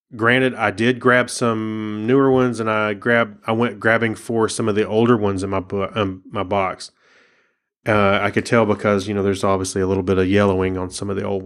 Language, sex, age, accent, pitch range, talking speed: English, male, 30-49, American, 100-125 Hz, 230 wpm